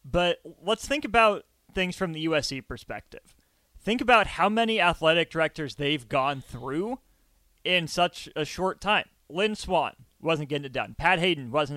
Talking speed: 165 wpm